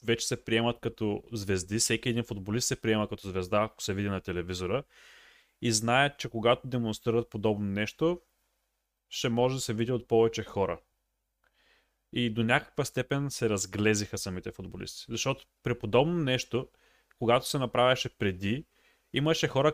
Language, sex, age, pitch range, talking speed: Bulgarian, male, 30-49, 105-125 Hz, 150 wpm